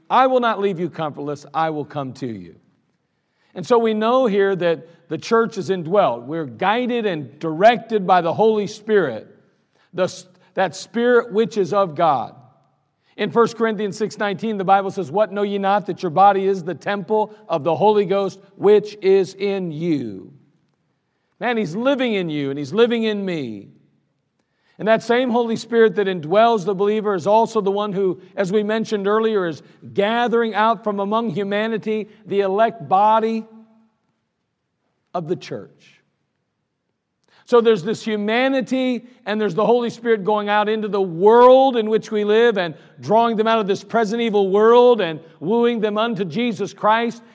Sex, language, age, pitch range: male, English, 50-69, 185-225 Hz